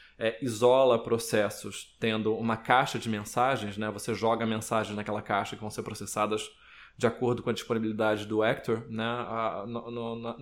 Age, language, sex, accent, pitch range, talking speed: 20-39, Portuguese, male, Brazilian, 110-130 Hz, 165 wpm